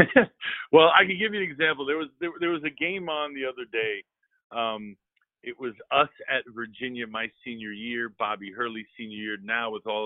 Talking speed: 205 wpm